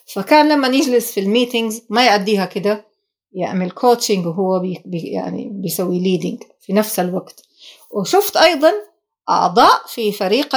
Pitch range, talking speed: 185-230 Hz, 135 wpm